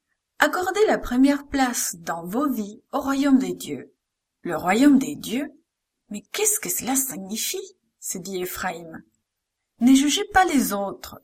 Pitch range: 200-280 Hz